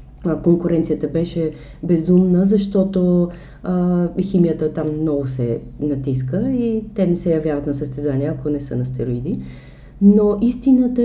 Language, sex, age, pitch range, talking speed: Bulgarian, female, 30-49, 155-205 Hz, 130 wpm